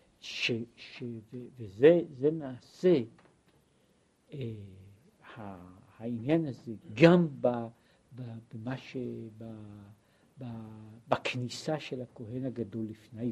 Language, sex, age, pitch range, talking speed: Hebrew, male, 60-79, 115-160 Hz, 85 wpm